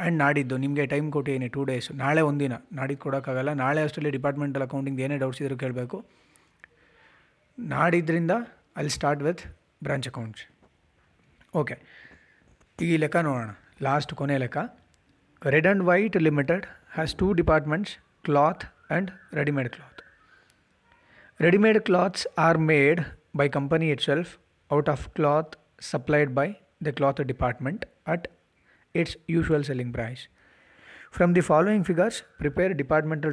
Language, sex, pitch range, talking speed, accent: Kannada, male, 140-175 Hz, 125 wpm, native